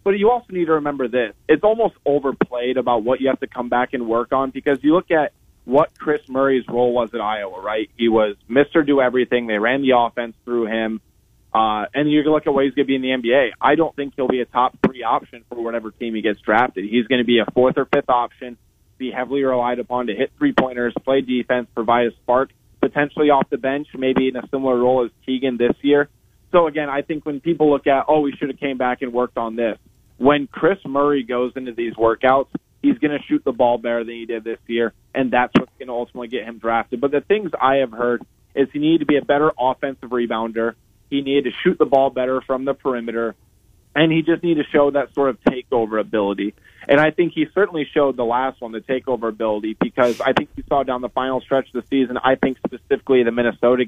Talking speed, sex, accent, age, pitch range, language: 240 wpm, male, American, 20-39, 120-140 Hz, English